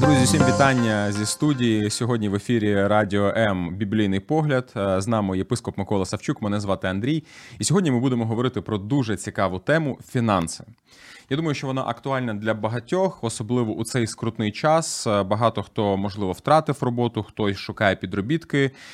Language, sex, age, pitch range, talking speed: Ukrainian, male, 20-39, 105-135 Hz, 160 wpm